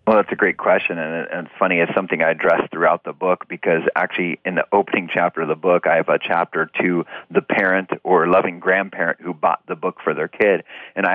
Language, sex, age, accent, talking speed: English, male, 40-59, American, 230 wpm